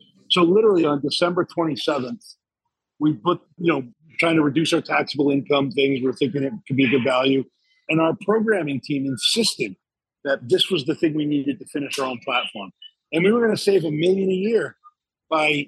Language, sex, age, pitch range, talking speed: English, male, 40-59, 140-180 Hz, 195 wpm